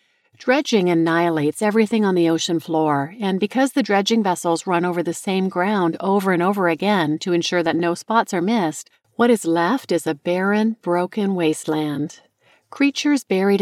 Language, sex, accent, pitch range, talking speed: English, female, American, 160-215 Hz, 165 wpm